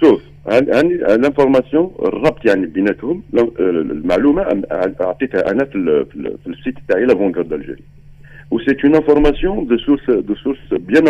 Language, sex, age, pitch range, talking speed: Arabic, male, 50-69, 115-155 Hz, 160 wpm